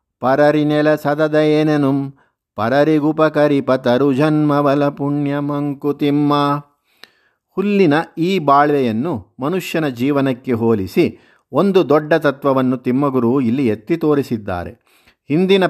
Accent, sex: native, male